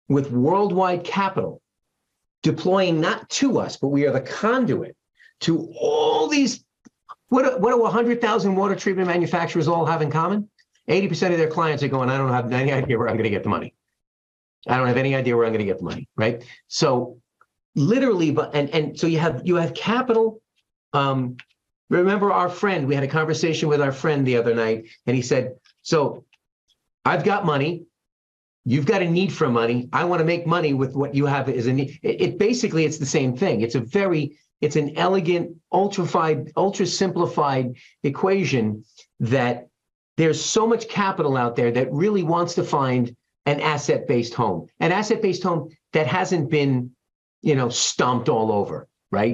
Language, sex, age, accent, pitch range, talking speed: English, male, 50-69, American, 125-180 Hz, 185 wpm